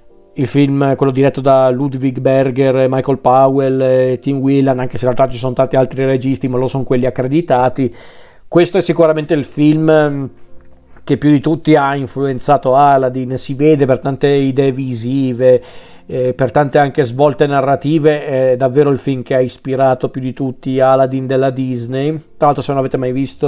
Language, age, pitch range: Italian, 40-59, 130-150 Hz